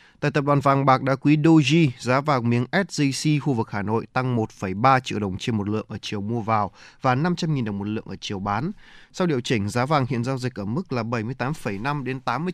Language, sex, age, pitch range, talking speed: Vietnamese, male, 20-39, 110-140 Hz, 235 wpm